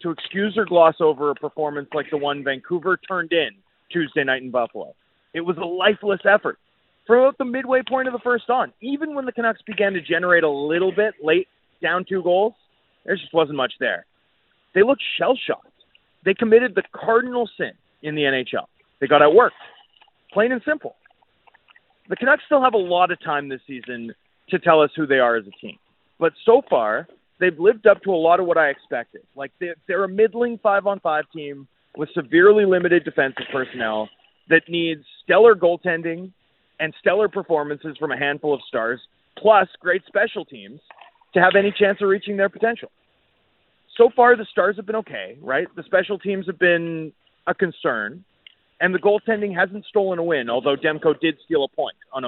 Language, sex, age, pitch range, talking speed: English, male, 30-49, 155-210 Hz, 190 wpm